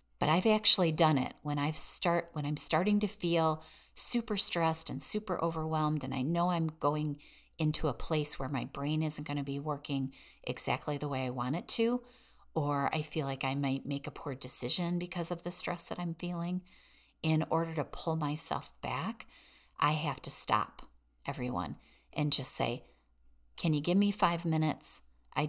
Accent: American